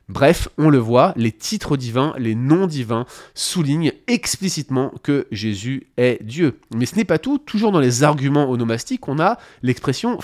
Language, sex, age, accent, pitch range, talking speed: French, male, 30-49, French, 120-170 Hz, 170 wpm